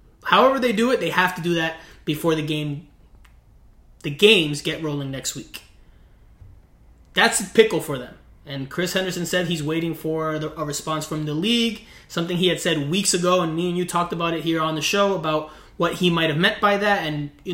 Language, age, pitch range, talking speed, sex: English, 20-39, 145-180 Hz, 215 wpm, male